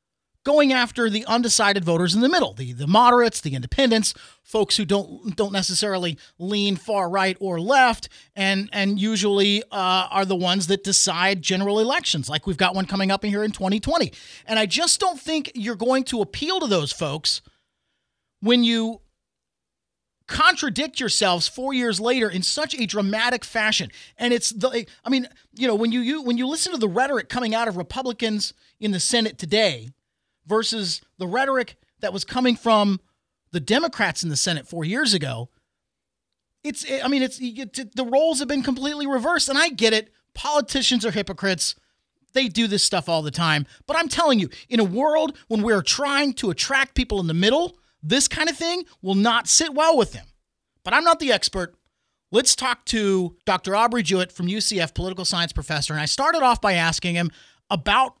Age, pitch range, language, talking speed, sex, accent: 40-59, 190-255 Hz, English, 185 wpm, male, American